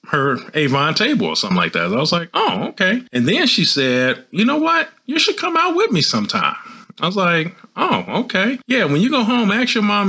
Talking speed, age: 240 wpm, 40-59